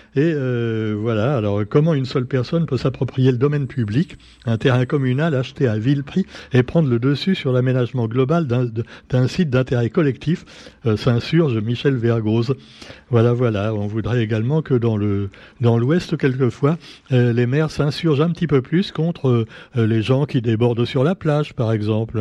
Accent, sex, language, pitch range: French, male, French, 115-150 Hz